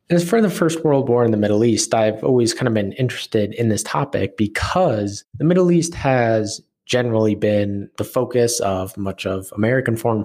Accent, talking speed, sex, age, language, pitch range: American, 195 wpm, male, 20-39, English, 100-120 Hz